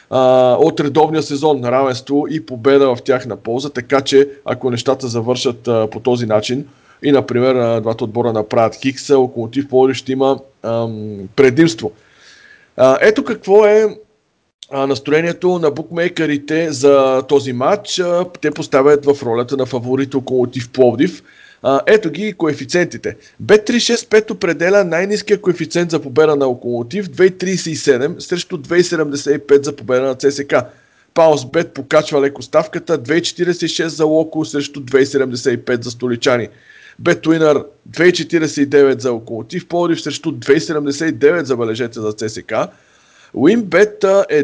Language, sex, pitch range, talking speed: Bulgarian, male, 130-170 Hz, 125 wpm